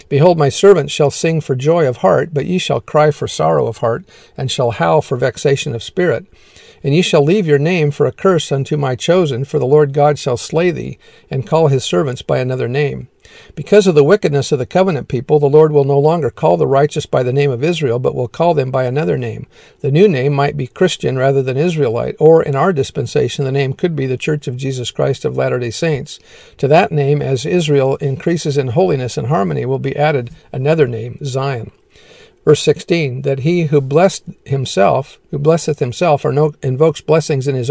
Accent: American